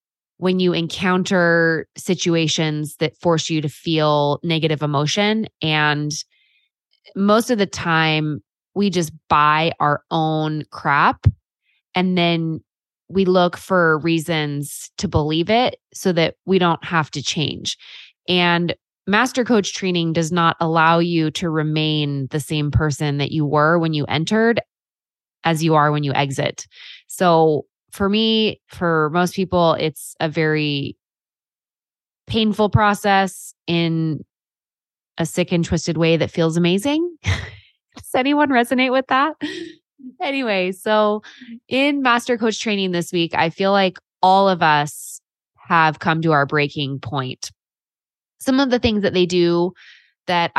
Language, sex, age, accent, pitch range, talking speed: English, female, 20-39, American, 155-195 Hz, 140 wpm